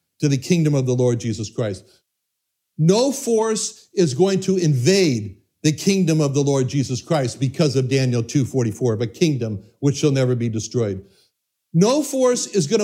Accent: American